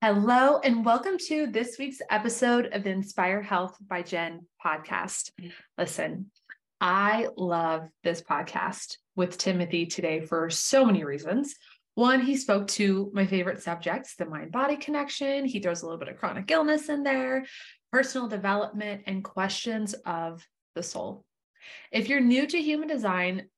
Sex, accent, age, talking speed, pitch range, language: female, American, 20-39, 150 wpm, 175-235 Hz, English